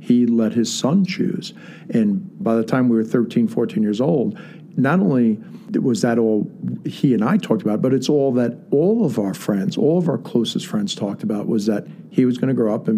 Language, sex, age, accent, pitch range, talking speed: English, male, 50-69, American, 115-195 Hz, 220 wpm